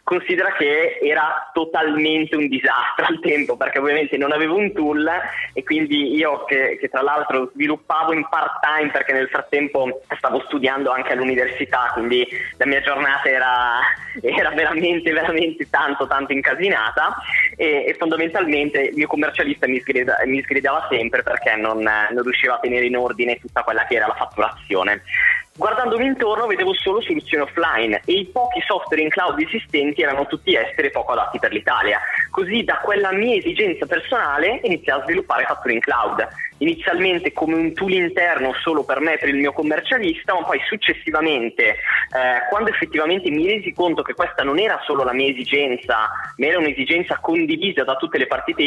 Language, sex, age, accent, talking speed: Italian, male, 20-39, native, 170 wpm